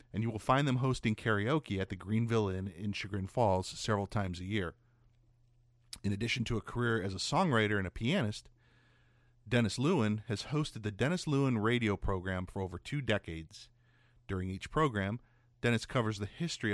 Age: 40-59